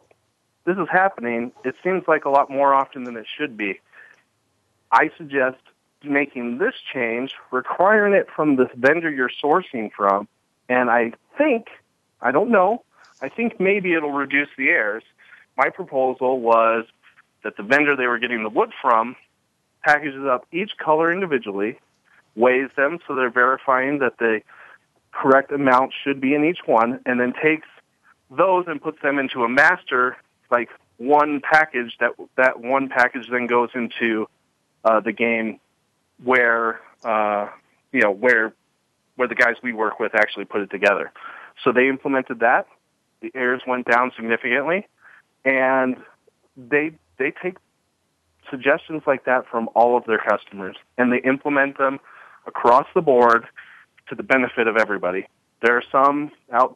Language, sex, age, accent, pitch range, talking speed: English, male, 40-59, American, 120-145 Hz, 155 wpm